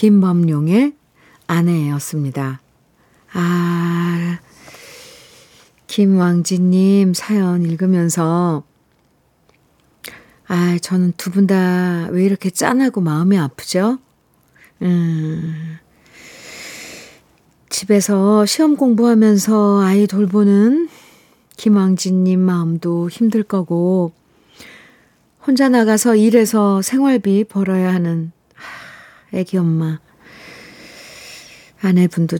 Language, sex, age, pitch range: Korean, female, 50-69, 175-215 Hz